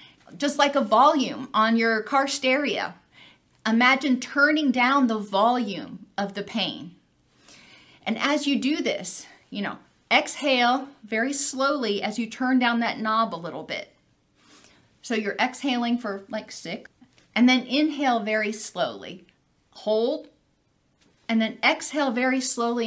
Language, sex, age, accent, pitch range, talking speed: English, female, 40-59, American, 220-275 Hz, 135 wpm